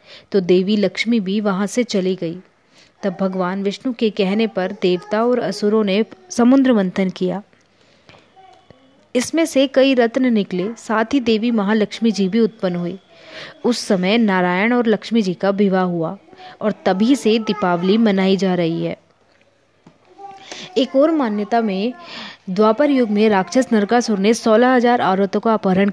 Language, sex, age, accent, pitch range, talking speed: Hindi, female, 20-39, native, 195-235 Hz, 150 wpm